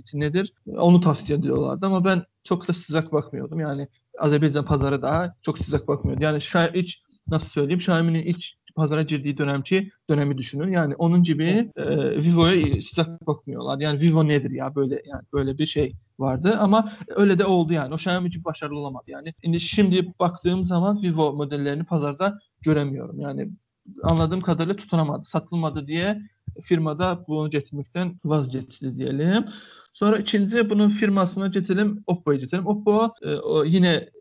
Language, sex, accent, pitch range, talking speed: Turkish, male, native, 155-185 Hz, 145 wpm